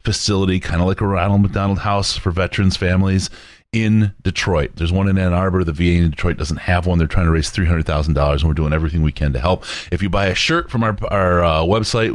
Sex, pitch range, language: male, 80-100 Hz, English